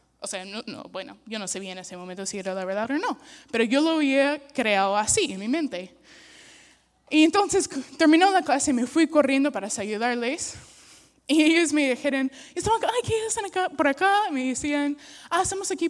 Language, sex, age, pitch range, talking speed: English, female, 10-29, 255-330 Hz, 200 wpm